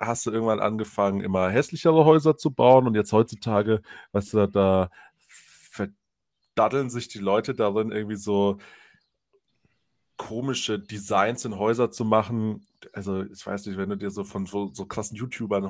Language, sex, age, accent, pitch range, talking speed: German, male, 30-49, German, 105-125 Hz, 155 wpm